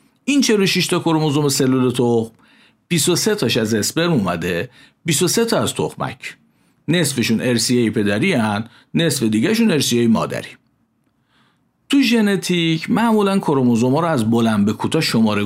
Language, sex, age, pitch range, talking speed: Persian, male, 50-69, 115-175 Hz, 130 wpm